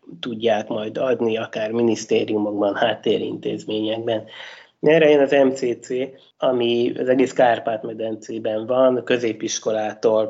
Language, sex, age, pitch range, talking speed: Hungarian, male, 20-39, 110-130 Hz, 85 wpm